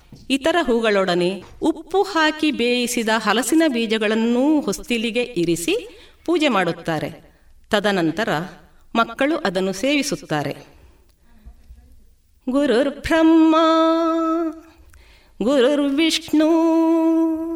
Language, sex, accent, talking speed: Kannada, female, native, 60 wpm